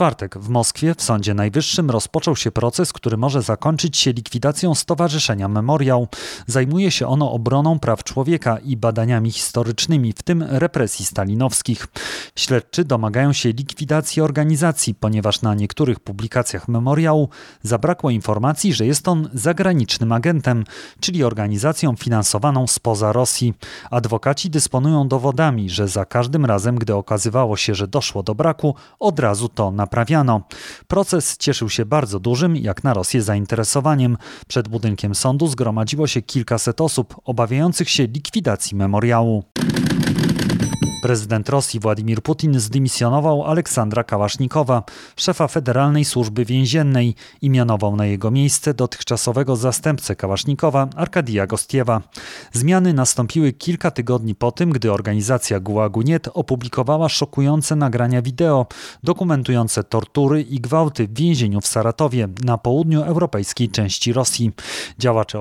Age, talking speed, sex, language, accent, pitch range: 30-49, 125 wpm, male, Polish, native, 110-150 Hz